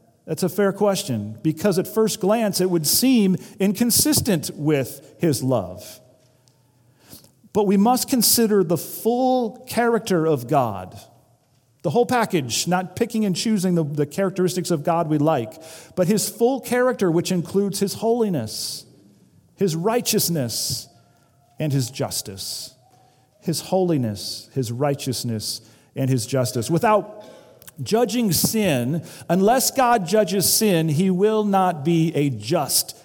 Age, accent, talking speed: 40-59, American, 130 wpm